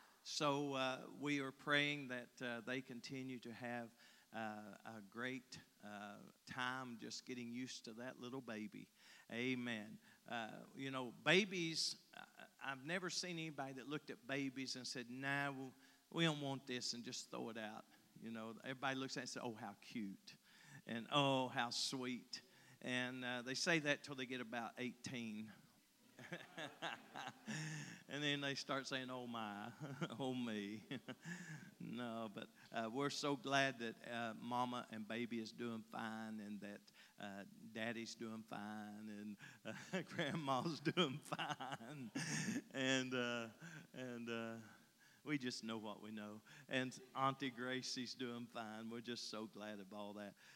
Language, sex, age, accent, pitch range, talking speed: English, male, 50-69, American, 115-140 Hz, 155 wpm